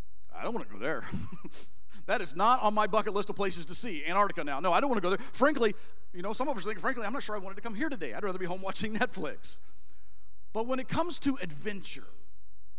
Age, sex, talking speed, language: 40-59, male, 260 wpm, English